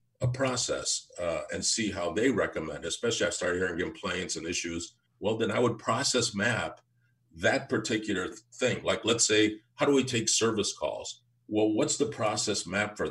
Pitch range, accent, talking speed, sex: 105-125 Hz, American, 180 wpm, male